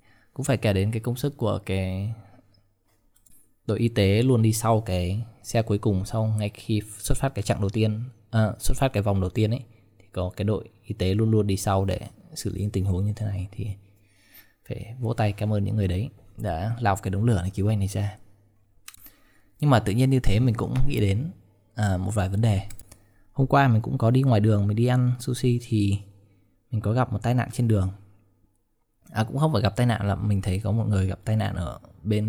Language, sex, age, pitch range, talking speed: Vietnamese, male, 20-39, 100-120 Hz, 235 wpm